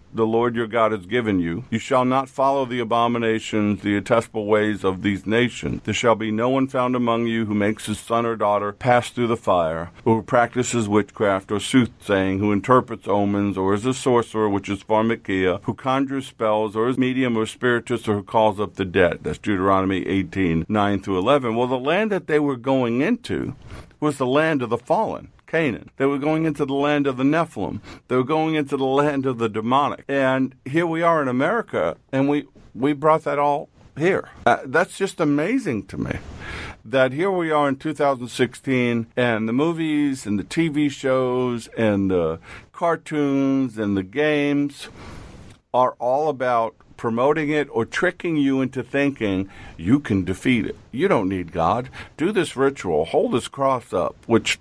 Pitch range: 105-140 Hz